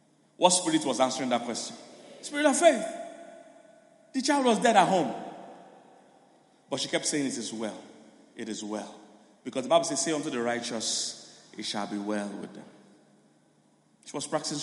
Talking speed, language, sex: 170 wpm, English, male